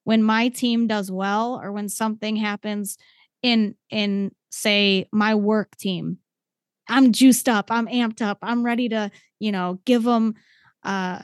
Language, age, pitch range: English, 20-39, 190-225 Hz